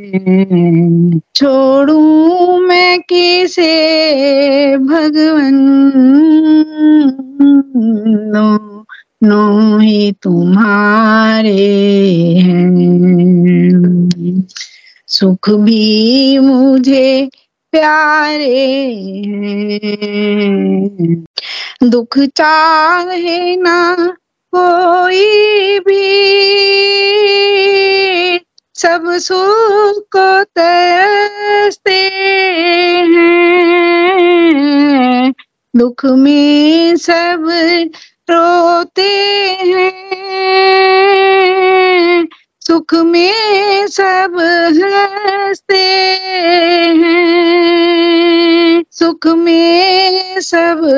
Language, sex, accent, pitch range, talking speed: Hindi, female, native, 220-360 Hz, 40 wpm